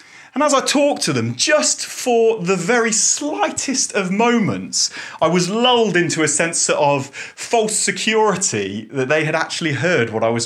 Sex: male